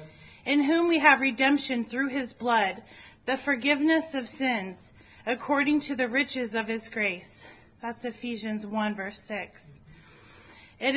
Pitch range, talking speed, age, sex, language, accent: 220-270 Hz, 135 wpm, 30-49, female, English, American